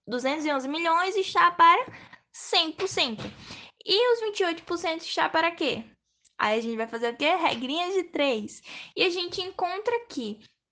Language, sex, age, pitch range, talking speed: Portuguese, female, 10-29, 260-375 Hz, 145 wpm